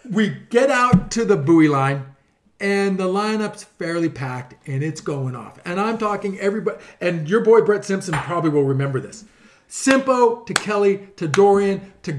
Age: 40-59